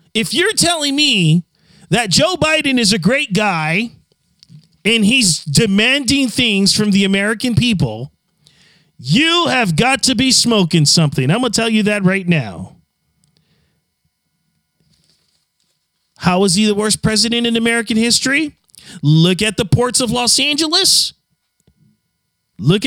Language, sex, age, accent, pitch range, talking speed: English, male, 40-59, American, 180-265 Hz, 135 wpm